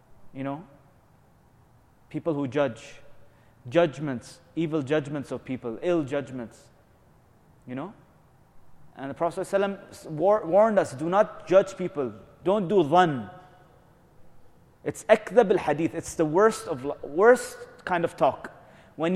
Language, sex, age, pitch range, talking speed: English, male, 30-49, 145-200 Hz, 120 wpm